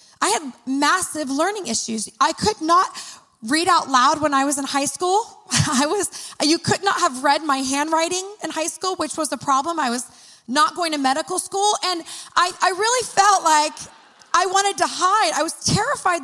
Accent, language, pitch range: American, English, 235-310 Hz